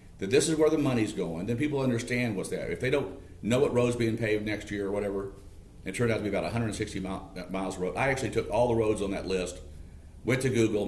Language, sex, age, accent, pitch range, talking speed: English, male, 50-69, American, 90-115 Hz, 255 wpm